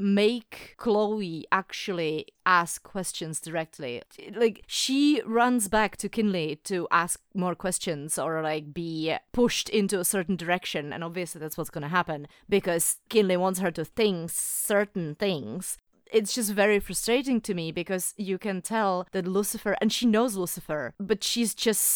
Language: English